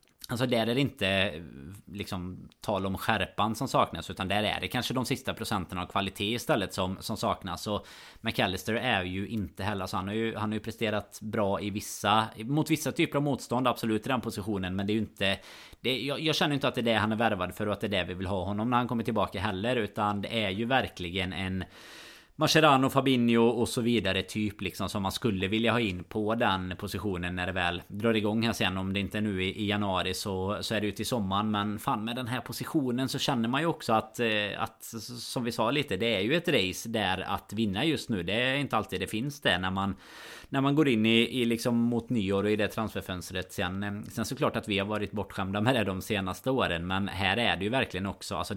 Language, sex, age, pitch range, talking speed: Swedish, male, 20-39, 95-120 Hz, 240 wpm